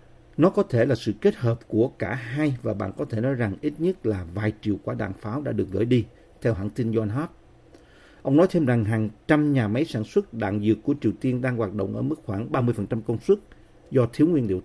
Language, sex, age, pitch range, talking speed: Vietnamese, male, 50-69, 110-145 Hz, 250 wpm